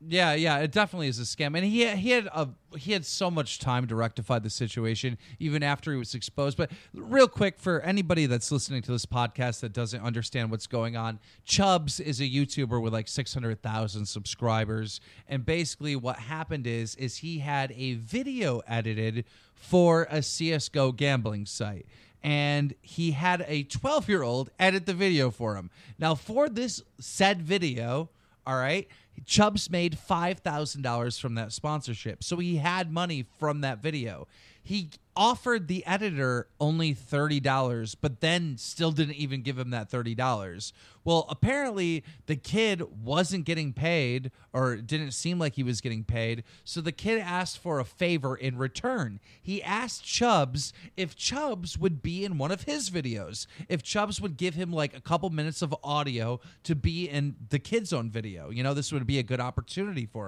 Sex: male